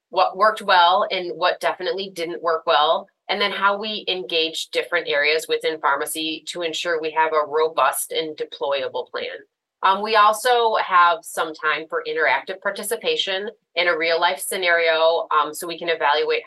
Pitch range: 165-225 Hz